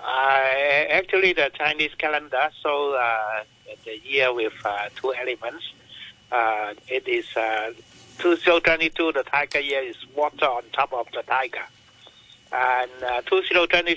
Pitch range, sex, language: 135-185 Hz, male, English